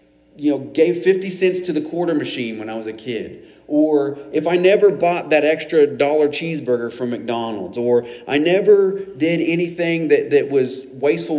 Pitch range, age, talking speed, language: 130-190 Hz, 40-59, 180 wpm, English